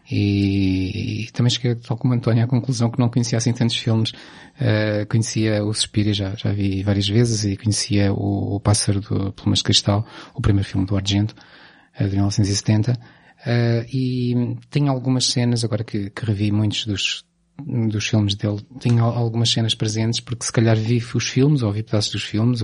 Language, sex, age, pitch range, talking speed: Portuguese, male, 20-39, 105-120 Hz, 185 wpm